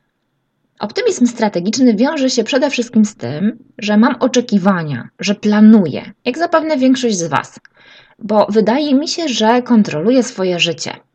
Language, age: Polish, 20-39